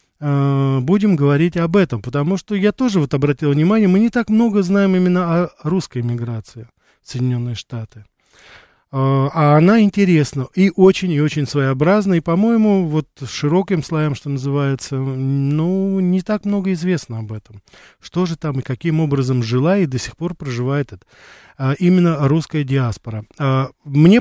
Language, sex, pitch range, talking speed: Russian, male, 130-175 Hz, 155 wpm